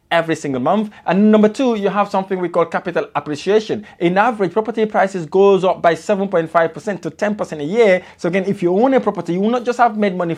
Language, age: English, 20-39